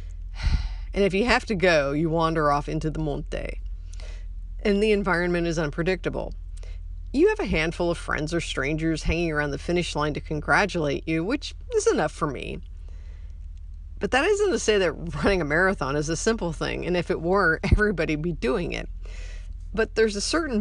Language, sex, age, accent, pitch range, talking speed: English, female, 40-59, American, 145-195 Hz, 185 wpm